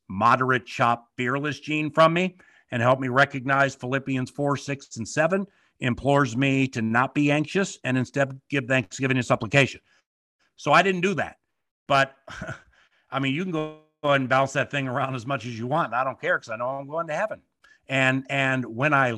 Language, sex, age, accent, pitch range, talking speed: English, male, 50-69, American, 125-150 Hz, 195 wpm